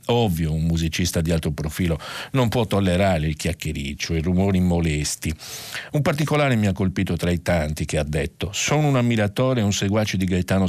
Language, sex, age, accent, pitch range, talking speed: Italian, male, 50-69, native, 90-120 Hz, 185 wpm